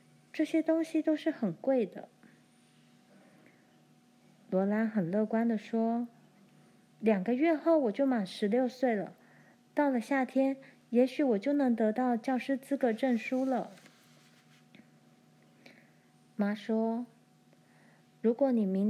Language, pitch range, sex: Chinese, 210-255 Hz, female